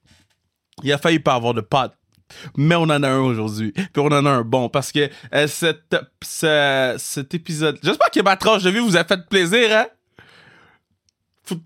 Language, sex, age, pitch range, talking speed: French, male, 20-39, 130-210 Hz, 205 wpm